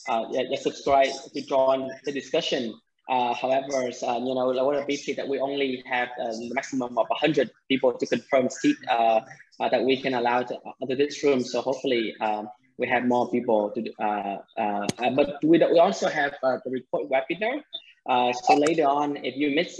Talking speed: 205 wpm